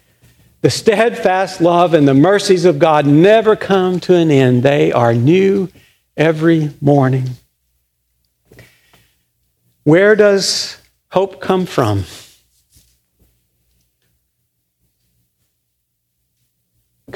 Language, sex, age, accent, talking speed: English, male, 50-69, American, 85 wpm